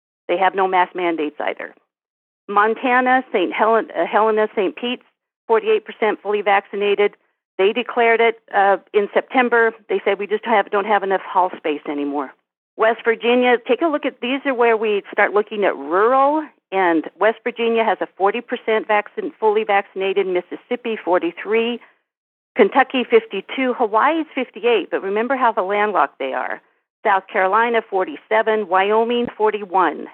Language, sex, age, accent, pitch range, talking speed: English, female, 50-69, American, 185-235 Hz, 150 wpm